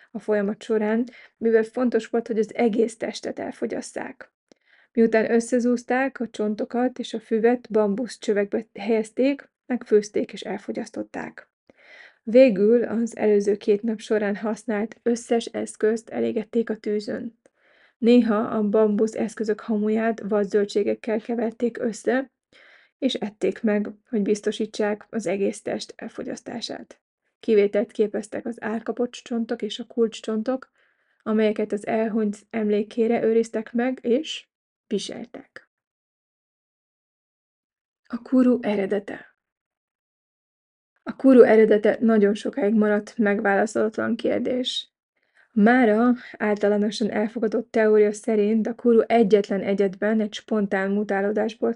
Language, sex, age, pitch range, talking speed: Hungarian, female, 30-49, 210-235 Hz, 105 wpm